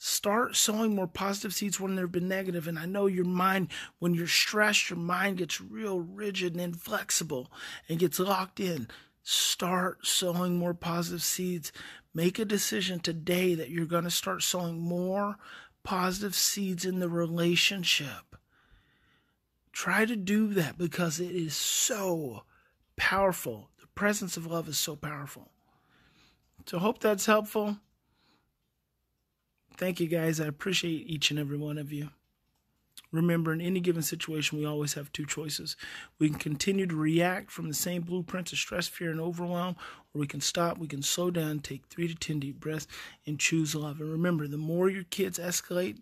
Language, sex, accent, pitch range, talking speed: English, male, American, 150-185 Hz, 165 wpm